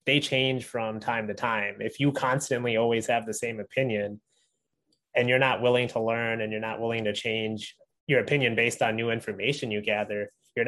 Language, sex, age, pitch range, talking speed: English, male, 20-39, 115-140 Hz, 195 wpm